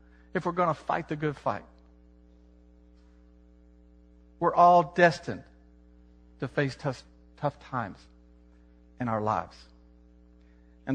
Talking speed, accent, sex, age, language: 110 wpm, American, male, 50-69, English